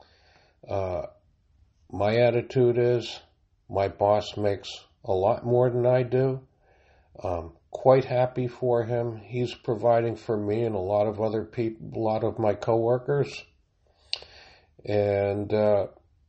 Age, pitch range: 50-69, 90-115 Hz